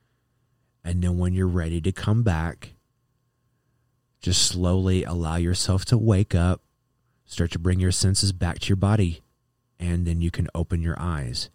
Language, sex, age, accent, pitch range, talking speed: English, male, 30-49, American, 85-120 Hz, 160 wpm